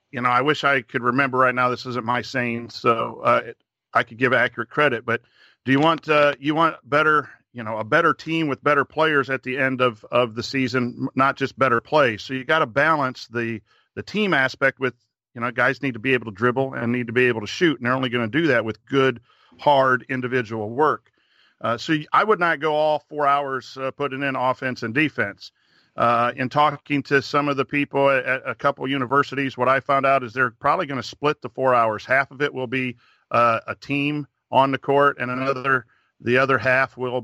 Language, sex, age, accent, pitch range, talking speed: English, male, 50-69, American, 125-140 Hz, 230 wpm